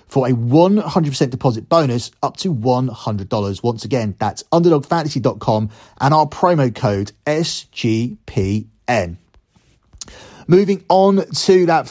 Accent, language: British, English